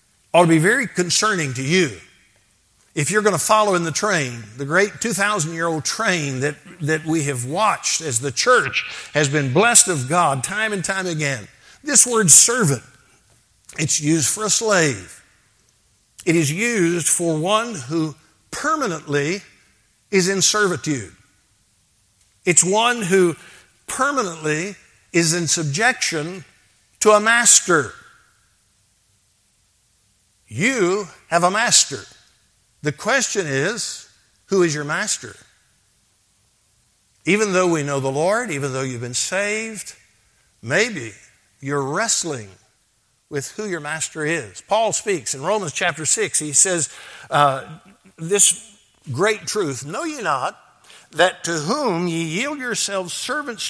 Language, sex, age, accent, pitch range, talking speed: English, male, 60-79, American, 120-200 Hz, 130 wpm